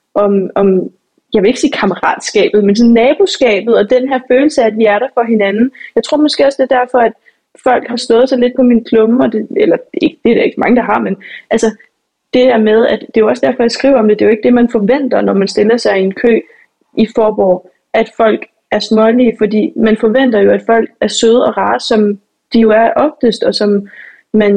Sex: female